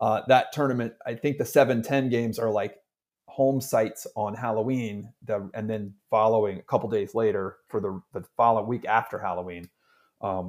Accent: American